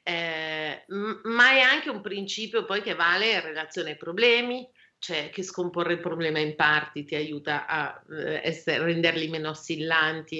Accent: native